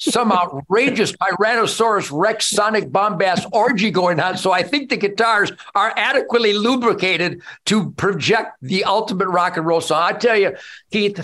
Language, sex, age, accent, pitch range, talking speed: English, male, 50-69, American, 140-185 Hz, 155 wpm